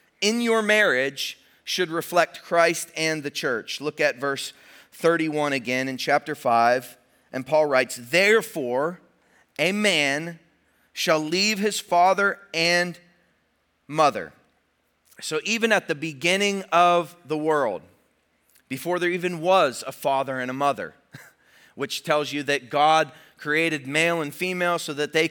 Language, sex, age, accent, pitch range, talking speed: English, male, 30-49, American, 155-195 Hz, 140 wpm